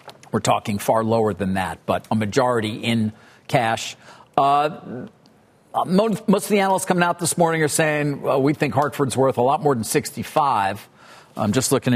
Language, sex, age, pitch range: English, male, 50-69, 120-150 Hz